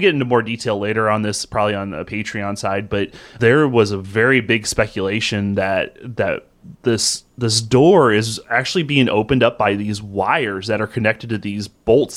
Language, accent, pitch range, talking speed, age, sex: English, American, 100-120 Hz, 185 wpm, 30-49, male